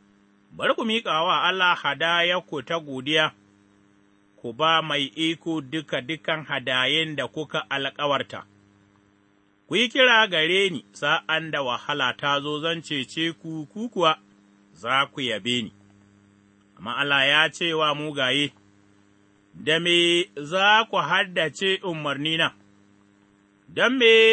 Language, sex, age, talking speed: English, male, 30-49, 95 wpm